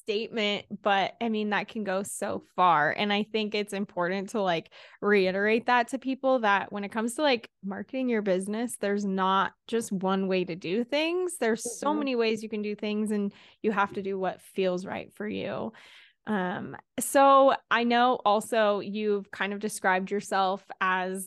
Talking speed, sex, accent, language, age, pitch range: 185 wpm, female, American, English, 20-39, 195-235 Hz